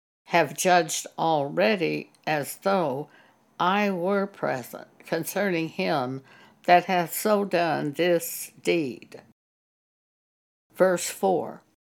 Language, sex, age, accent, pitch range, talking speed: English, female, 60-79, American, 160-205 Hz, 90 wpm